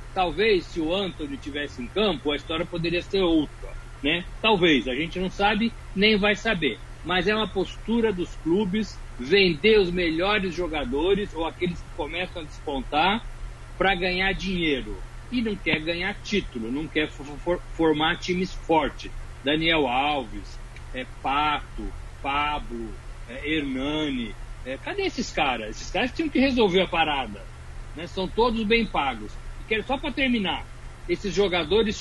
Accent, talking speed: Brazilian, 150 wpm